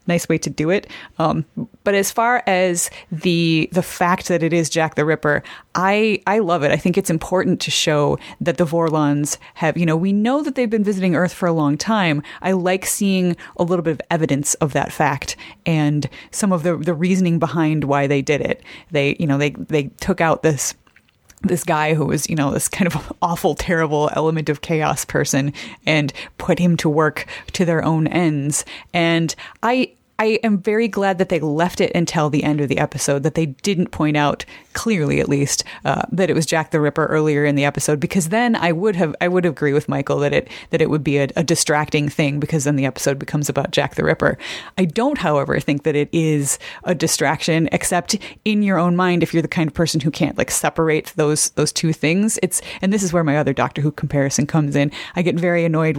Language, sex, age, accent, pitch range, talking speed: English, female, 30-49, American, 150-180 Hz, 225 wpm